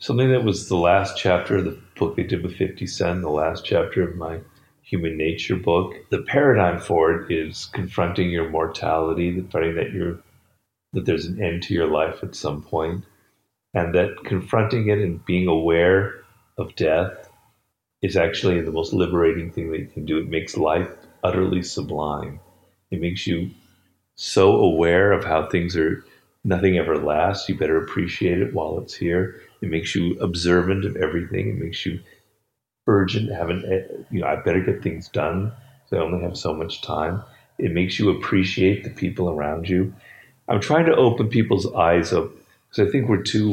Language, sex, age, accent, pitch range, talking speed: English, male, 40-59, American, 80-100 Hz, 185 wpm